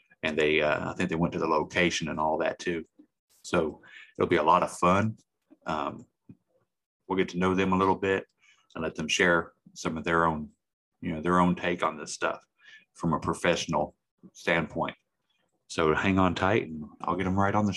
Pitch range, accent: 85-95 Hz, American